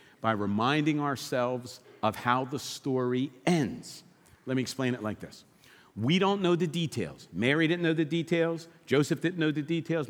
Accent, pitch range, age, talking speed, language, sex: American, 120-165 Hz, 50-69, 170 wpm, English, male